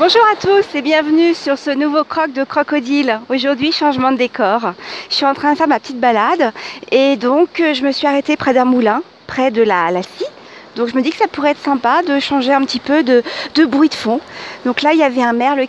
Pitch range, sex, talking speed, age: 225-300 Hz, female, 245 wpm, 40-59